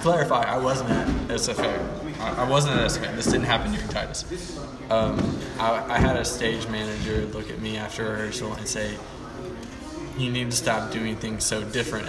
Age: 20-39